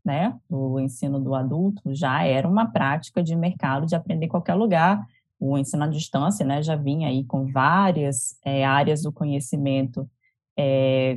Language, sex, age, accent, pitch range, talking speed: English, female, 20-39, Brazilian, 145-195 Hz, 165 wpm